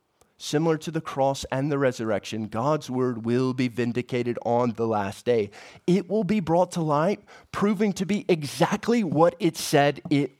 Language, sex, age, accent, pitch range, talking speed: English, male, 30-49, American, 115-145 Hz, 175 wpm